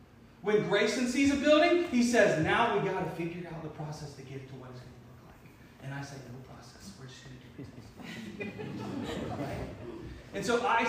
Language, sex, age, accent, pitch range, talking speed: English, male, 30-49, American, 190-235 Hz, 215 wpm